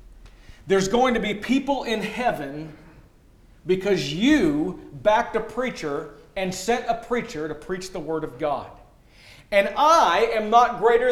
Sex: male